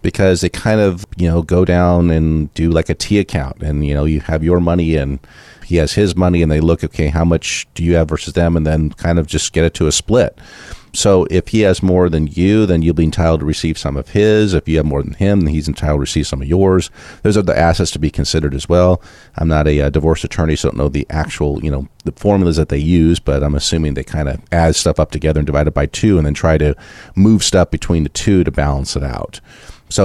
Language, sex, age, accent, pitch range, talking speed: English, male, 40-59, American, 75-90 Hz, 270 wpm